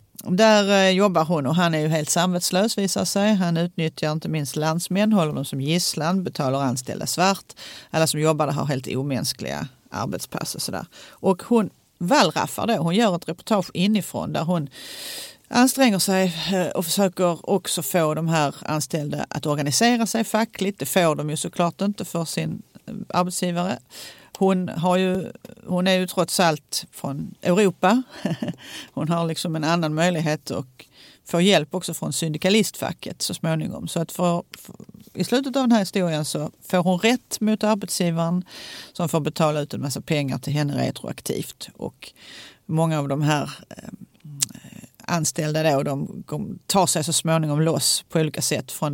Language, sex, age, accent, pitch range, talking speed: Swedish, female, 40-59, native, 155-195 Hz, 165 wpm